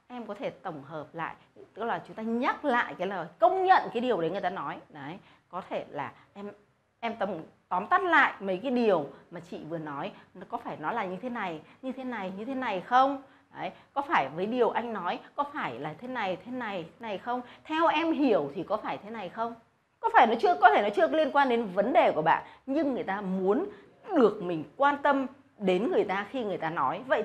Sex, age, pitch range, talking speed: female, 20-39, 185-265 Hz, 240 wpm